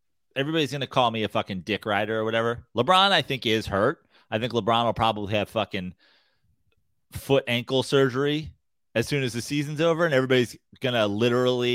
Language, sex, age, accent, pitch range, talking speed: English, male, 30-49, American, 100-130 Hz, 185 wpm